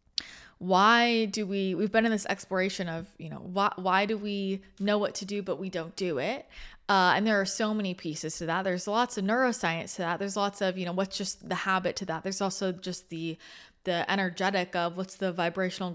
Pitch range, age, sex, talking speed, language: 180-205 Hz, 20-39, female, 225 wpm, English